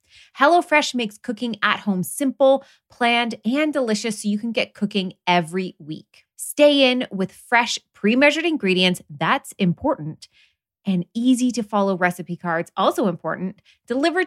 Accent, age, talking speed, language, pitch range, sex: American, 20-39, 130 wpm, English, 185-245 Hz, female